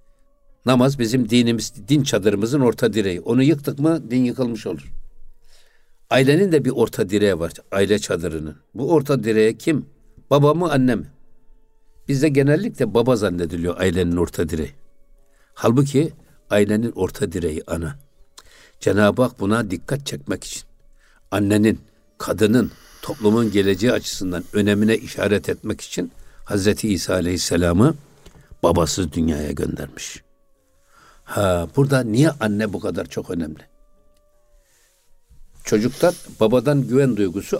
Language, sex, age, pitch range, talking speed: Turkish, male, 60-79, 95-130 Hz, 120 wpm